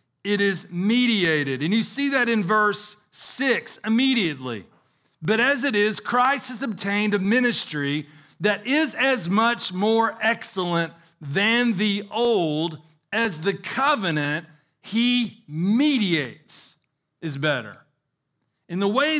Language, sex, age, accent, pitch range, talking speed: English, male, 40-59, American, 160-235 Hz, 120 wpm